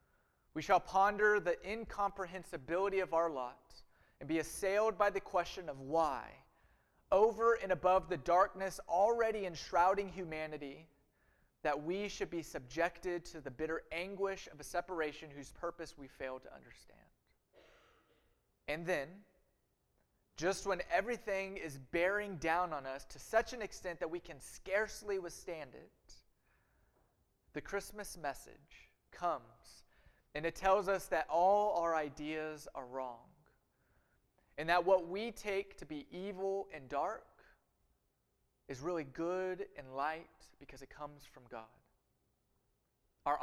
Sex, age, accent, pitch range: male, 30-49, American, 145-190 Hz